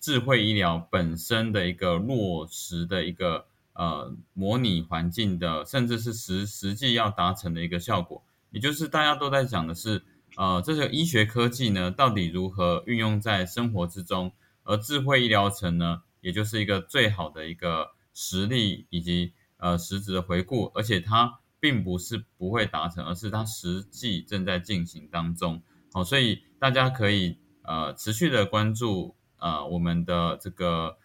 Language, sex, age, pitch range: Chinese, male, 20-39, 90-115 Hz